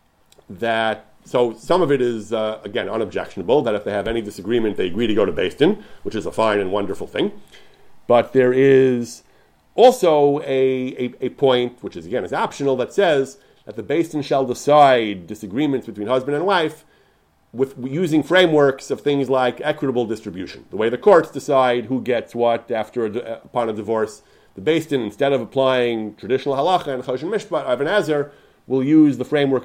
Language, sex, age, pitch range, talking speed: English, male, 40-59, 115-140 Hz, 180 wpm